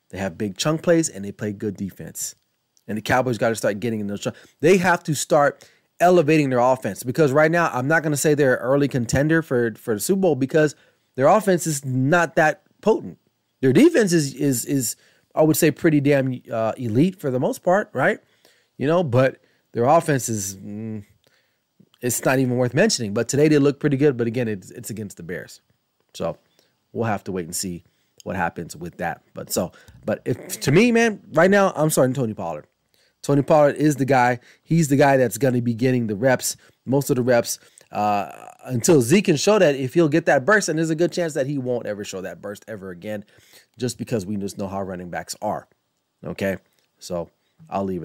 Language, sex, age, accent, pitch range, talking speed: English, male, 30-49, American, 110-160 Hz, 215 wpm